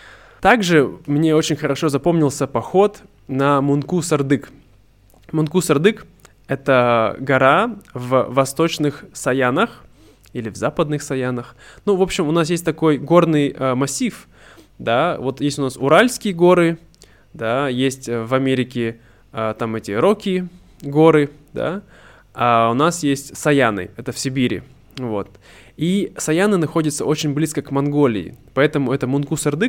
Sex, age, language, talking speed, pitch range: male, 20-39, Russian, 135 wpm, 125-165 Hz